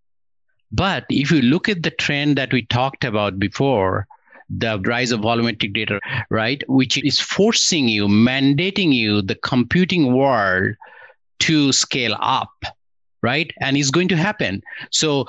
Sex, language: male, English